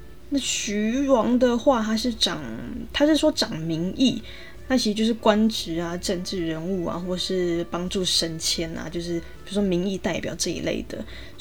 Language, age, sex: Chinese, 20-39, female